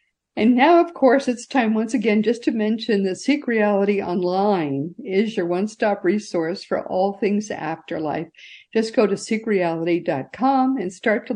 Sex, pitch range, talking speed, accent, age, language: female, 180-235 Hz, 165 wpm, American, 60-79, English